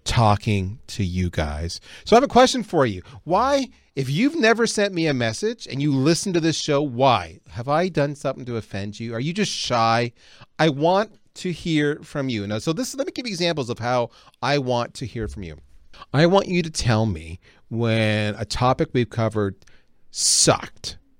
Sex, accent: male, American